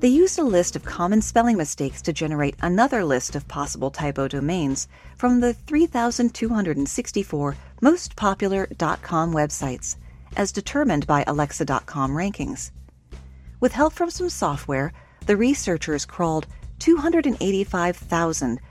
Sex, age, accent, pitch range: female, 40-59, American, 140-235 Hz